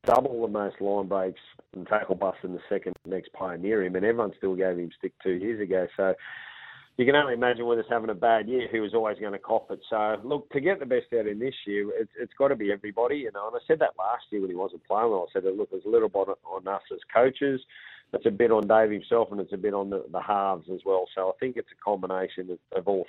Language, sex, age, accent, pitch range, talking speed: English, male, 40-59, Australian, 100-120 Hz, 280 wpm